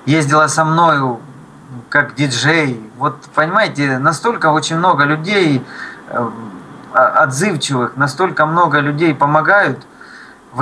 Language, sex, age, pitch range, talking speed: Russian, male, 20-39, 130-160 Hz, 95 wpm